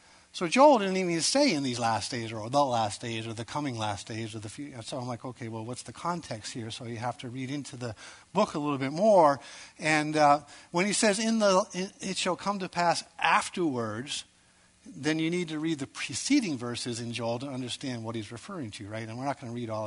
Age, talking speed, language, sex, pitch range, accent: 50-69, 240 wpm, English, male, 120-165 Hz, American